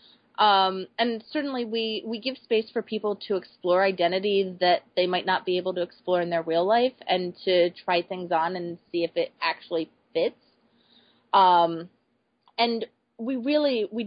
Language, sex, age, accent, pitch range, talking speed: English, female, 30-49, American, 170-225 Hz, 170 wpm